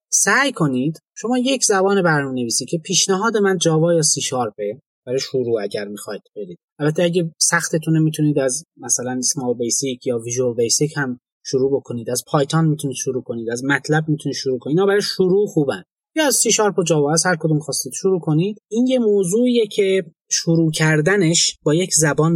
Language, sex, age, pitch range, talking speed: Persian, male, 30-49, 140-195 Hz, 175 wpm